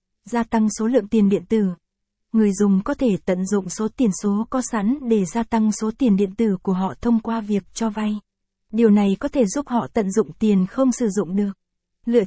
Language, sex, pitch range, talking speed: Vietnamese, female, 195-235 Hz, 225 wpm